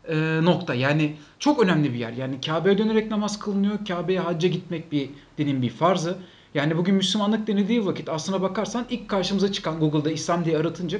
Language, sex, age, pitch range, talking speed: Turkish, male, 40-59, 155-215 Hz, 180 wpm